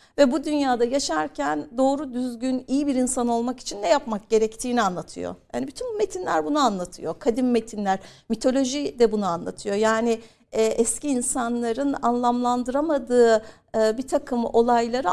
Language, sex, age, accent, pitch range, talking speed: Turkish, female, 60-79, native, 220-275 Hz, 140 wpm